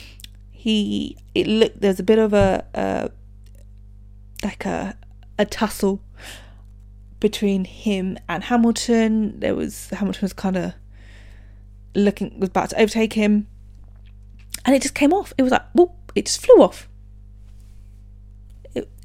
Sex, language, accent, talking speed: female, English, British, 135 wpm